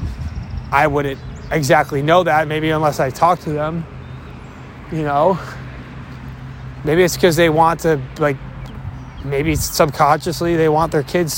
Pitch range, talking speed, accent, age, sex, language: 125-155 Hz, 135 wpm, American, 20-39, male, English